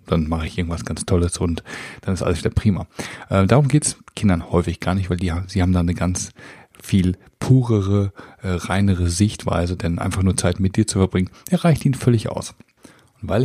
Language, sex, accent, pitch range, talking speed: German, male, German, 90-105 Hz, 195 wpm